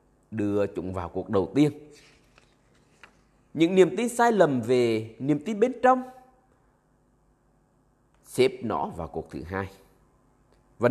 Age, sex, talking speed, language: 20-39, male, 125 wpm, Vietnamese